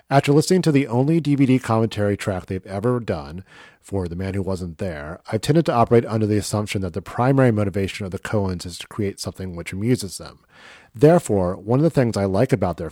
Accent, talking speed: American, 220 wpm